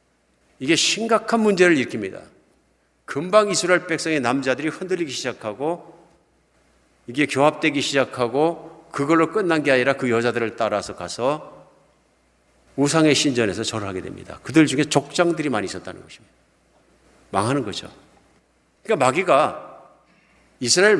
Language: Korean